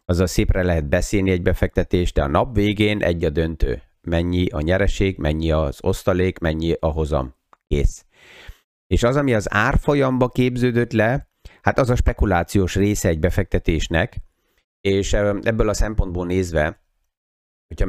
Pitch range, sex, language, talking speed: 85-110 Hz, male, Hungarian, 145 wpm